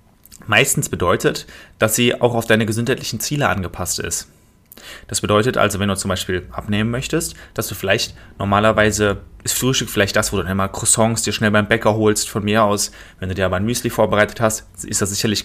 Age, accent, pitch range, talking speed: 30-49, German, 100-115 Hz, 200 wpm